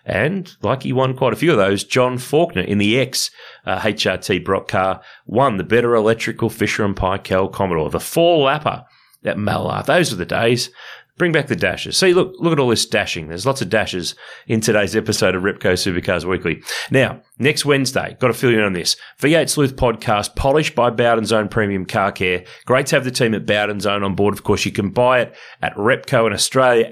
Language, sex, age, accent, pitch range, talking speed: English, male, 30-49, Australian, 105-130 Hz, 210 wpm